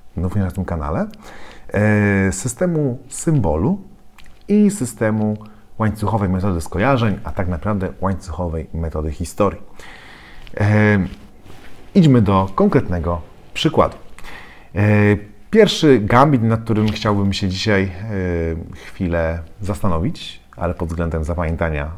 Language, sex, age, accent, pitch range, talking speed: Polish, male, 40-59, native, 85-110 Hz, 95 wpm